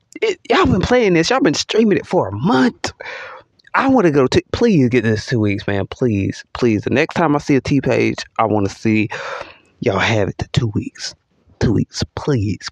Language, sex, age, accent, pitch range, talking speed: English, male, 20-39, American, 115-170 Hz, 210 wpm